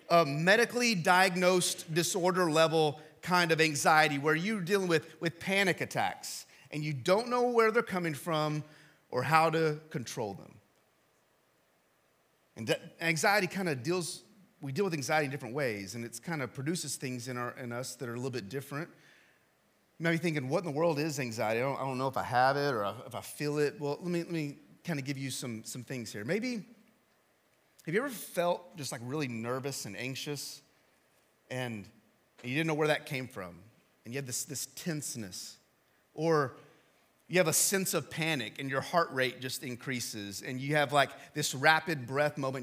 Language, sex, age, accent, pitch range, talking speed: English, male, 30-49, American, 135-180 Hz, 195 wpm